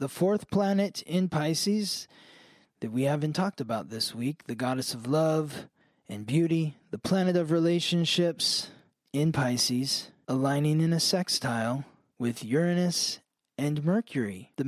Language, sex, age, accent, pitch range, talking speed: English, male, 20-39, American, 135-175 Hz, 135 wpm